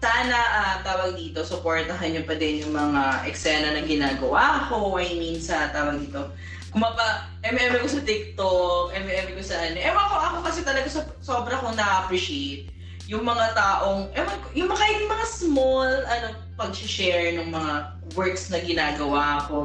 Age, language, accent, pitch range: 20-39, Filipino, native, 160-265 Hz